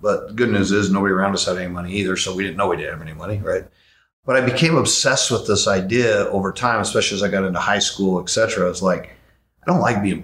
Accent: American